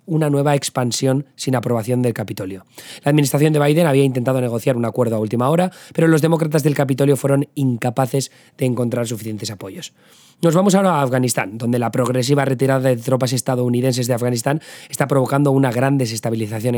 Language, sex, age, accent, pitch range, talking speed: Spanish, male, 20-39, Spanish, 120-145 Hz, 175 wpm